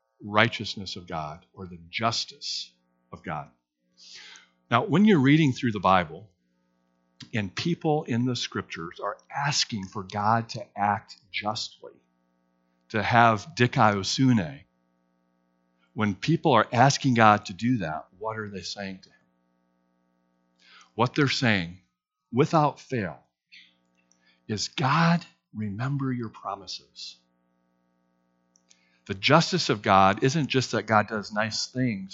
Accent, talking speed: American, 120 wpm